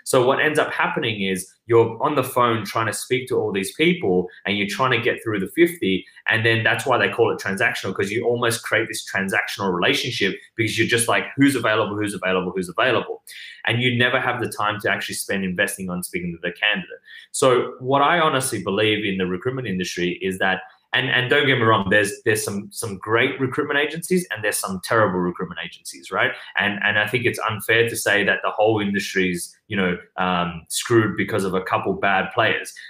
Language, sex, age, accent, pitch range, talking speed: English, male, 20-39, Australian, 95-125 Hz, 215 wpm